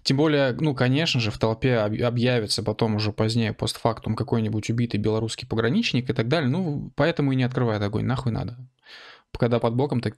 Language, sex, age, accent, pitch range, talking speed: Russian, male, 20-39, native, 115-140 Hz, 185 wpm